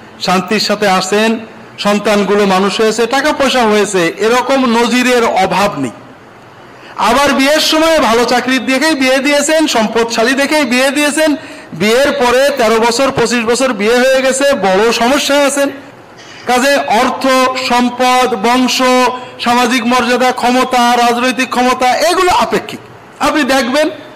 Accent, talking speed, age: native, 125 wpm, 50-69